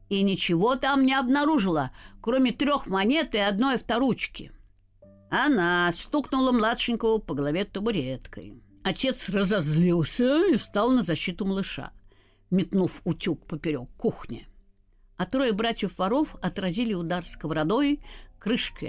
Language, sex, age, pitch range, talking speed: Russian, female, 50-69, 170-270 Hz, 115 wpm